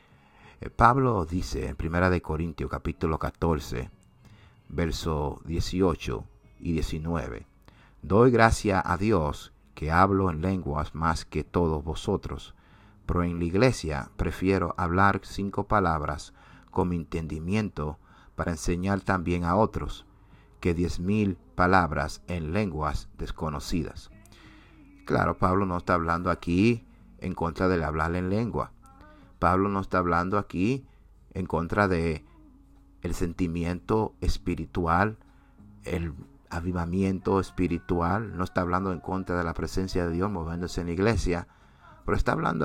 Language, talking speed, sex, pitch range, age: English, 125 wpm, male, 80-100 Hz, 50-69